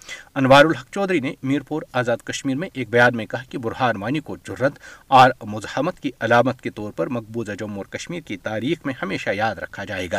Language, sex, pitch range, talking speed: Urdu, male, 115-140 Hz, 205 wpm